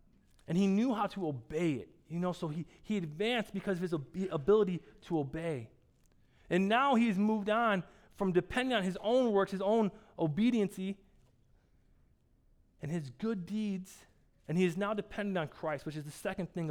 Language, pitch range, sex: English, 150-215 Hz, male